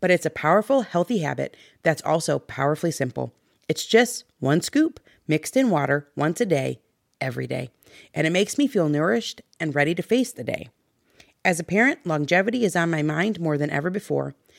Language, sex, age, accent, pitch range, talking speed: English, female, 30-49, American, 145-205 Hz, 190 wpm